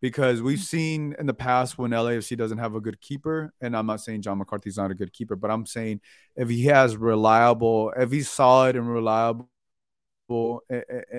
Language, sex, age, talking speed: English, male, 20-39, 195 wpm